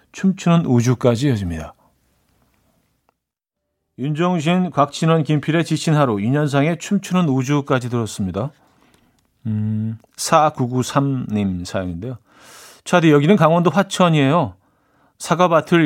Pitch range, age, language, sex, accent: 115-165 Hz, 40-59, Korean, male, native